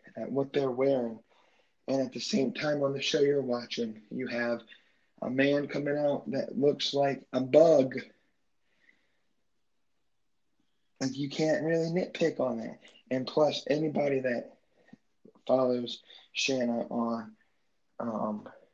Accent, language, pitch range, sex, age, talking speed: American, English, 120-150 Hz, male, 20-39, 130 wpm